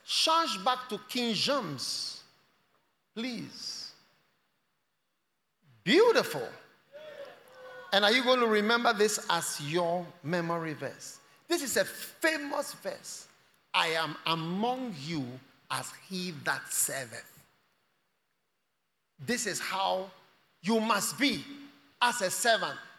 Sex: male